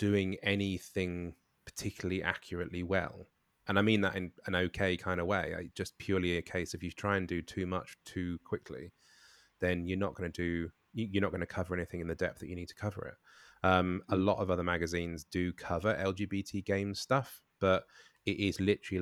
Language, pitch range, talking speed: English, 85-100 Hz, 200 wpm